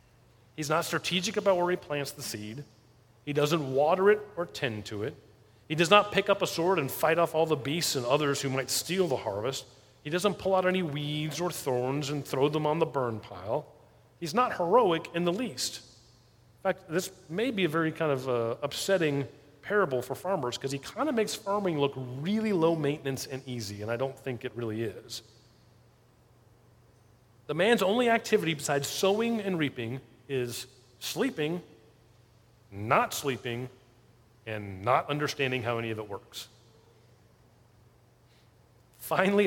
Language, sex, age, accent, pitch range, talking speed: English, male, 30-49, American, 120-165 Hz, 170 wpm